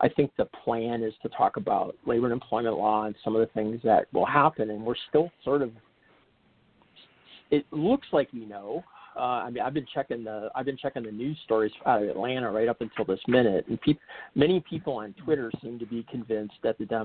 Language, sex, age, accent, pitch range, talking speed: English, male, 40-59, American, 110-120 Hz, 220 wpm